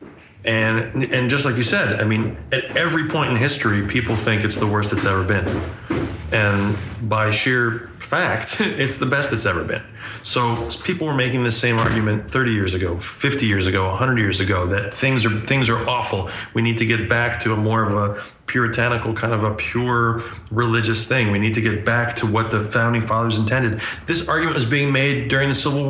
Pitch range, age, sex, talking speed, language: 105-130 Hz, 30-49, male, 205 wpm, English